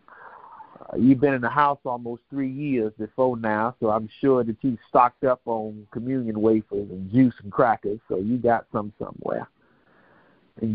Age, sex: 50-69, male